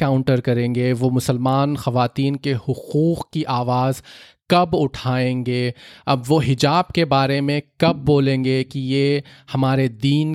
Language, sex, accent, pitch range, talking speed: English, male, Indian, 125-145 Hz, 135 wpm